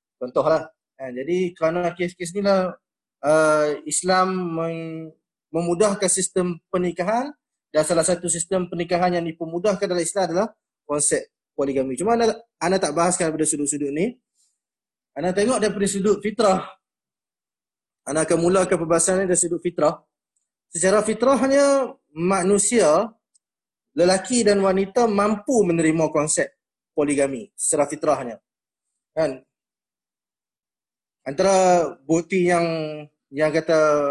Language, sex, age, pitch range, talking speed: Malay, male, 20-39, 160-205 Hz, 110 wpm